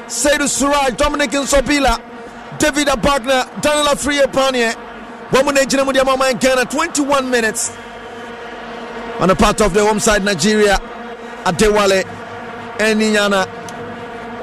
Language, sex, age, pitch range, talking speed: English, male, 50-69, 235-255 Hz, 110 wpm